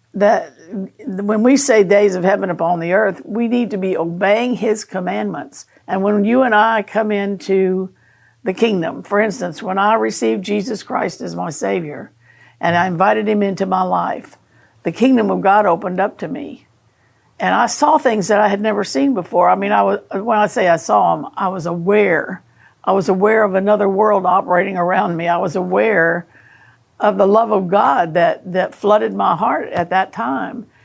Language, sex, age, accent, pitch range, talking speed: English, female, 60-79, American, 180-215 Hz, 190 wpm